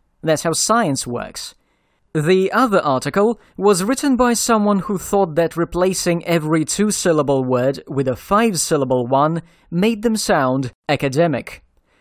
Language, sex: English, male